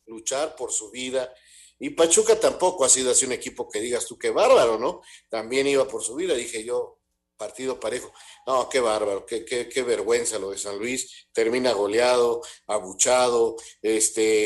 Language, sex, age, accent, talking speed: Spanish, male, 50-69, Mexican, 175 wpm